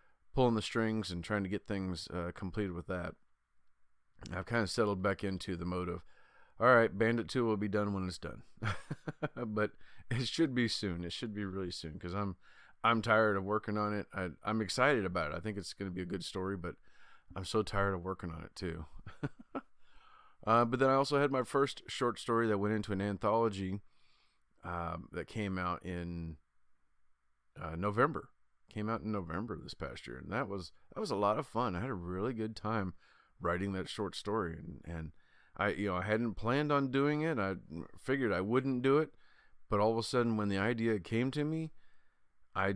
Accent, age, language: American, 40-59, English